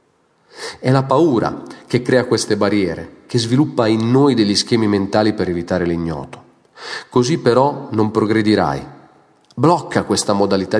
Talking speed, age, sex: 135 wpm, 40-59, male